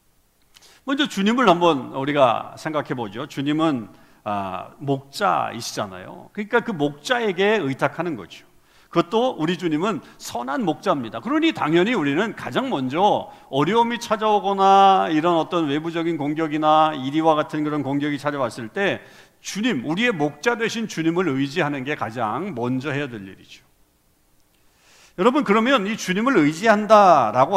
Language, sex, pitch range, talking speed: English, male, 145-215 Hz, 115 wpm